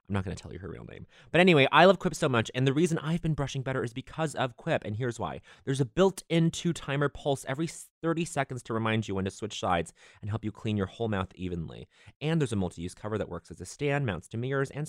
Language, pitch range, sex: English, 95-140 Hz, male